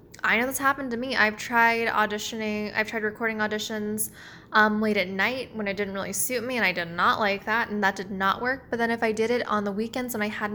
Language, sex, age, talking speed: English, female, 10-29, 260 wpm